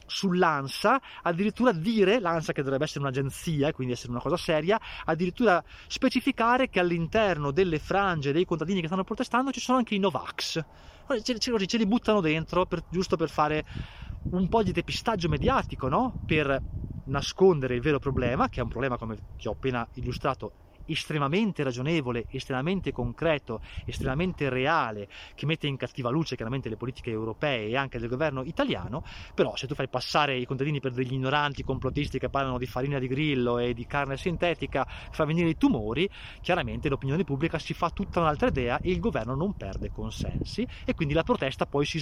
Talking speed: 175 wpm